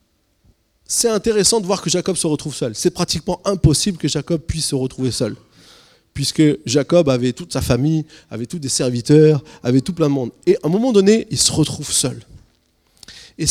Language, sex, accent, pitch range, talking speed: French, male, French, 120-175 Hz, 190 wpm